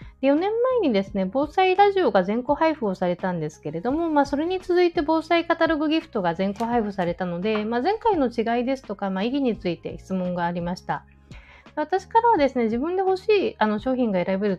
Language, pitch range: Japanese, 180-265 Hz